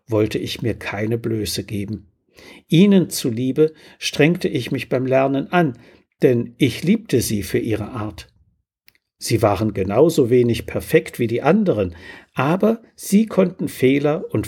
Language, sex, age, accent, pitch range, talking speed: German, male, 60-79, German, 100-155 Hz, 140 wpm